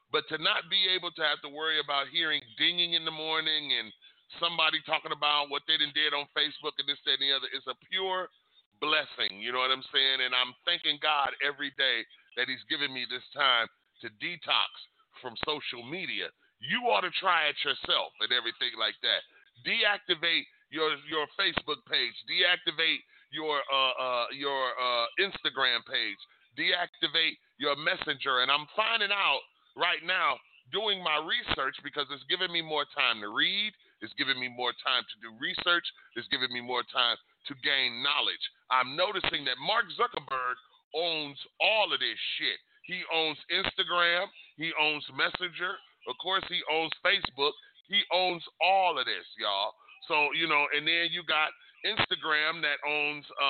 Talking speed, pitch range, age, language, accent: 175 wpm, 135-175 Hz, 30-49, English, American